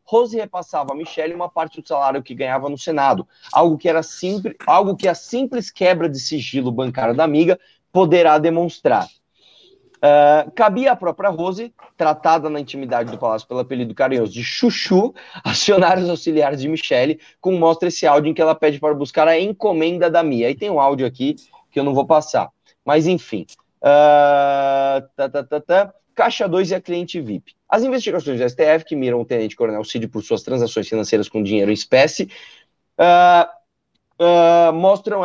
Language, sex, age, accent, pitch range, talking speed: Portuguese, male, 20-39, Brazilian, 140-185 Hz, 175 wpm